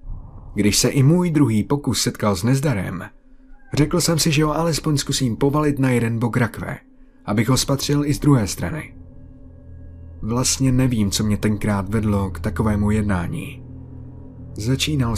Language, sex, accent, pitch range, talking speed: Czech, male, native, 105-140 Hz, 150 wpm